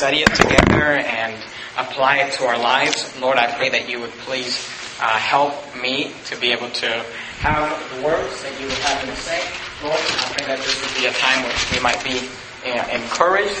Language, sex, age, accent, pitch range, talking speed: English, male, 30-49, American, 130-190 Hz, 205 wpm